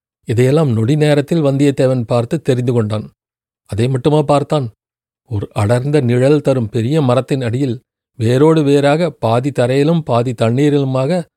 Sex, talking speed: male, 120 wpm